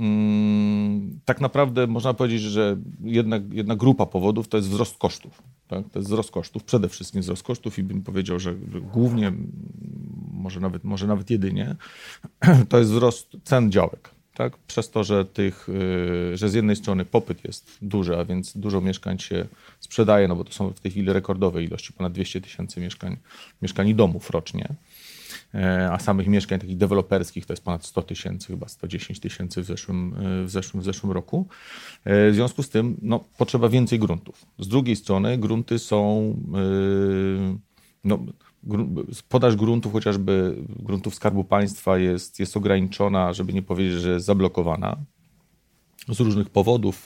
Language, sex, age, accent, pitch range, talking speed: Polish, male, 40-59, native, 95-115 Hz, 150 wpm